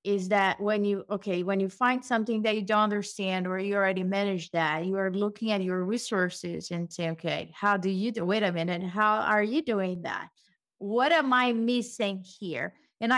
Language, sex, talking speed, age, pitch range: English, female, 205 wpm, 30-49, 200-250 Hz